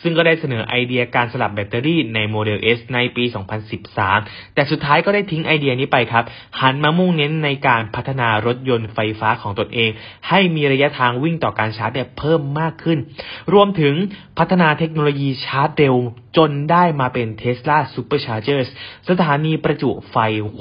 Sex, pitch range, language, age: male, 120-160 Hz, Thai, 20-39